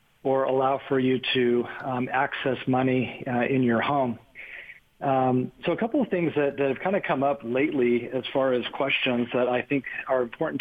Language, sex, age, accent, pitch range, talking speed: English, male, 40-59, American, 120-140 Hz, 200 wpm